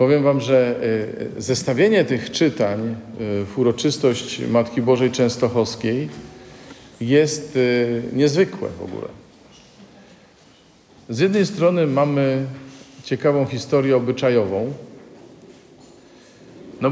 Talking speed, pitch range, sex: 80 wpm, 115-135 Hz, male